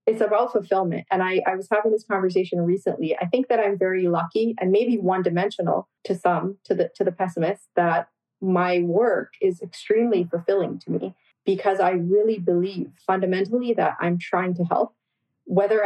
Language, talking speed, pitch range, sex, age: English, 180 wpm, 175-195 Hz, female, 30-49